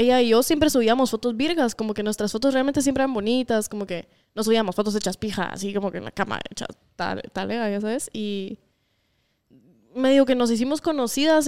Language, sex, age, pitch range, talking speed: Spanish, female, 10-29, 215-275 Hz, 210 wpm